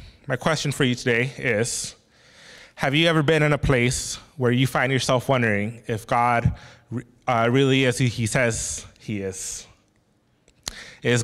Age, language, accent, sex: 20-39, English, American, male